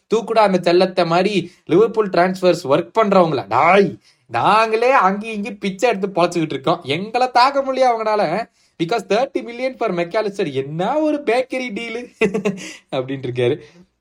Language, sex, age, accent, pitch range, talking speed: Tamil, male, 20-39, native, 130-195 Hz, 70 wpm